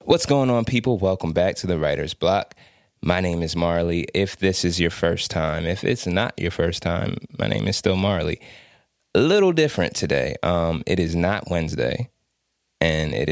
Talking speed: 190 wpm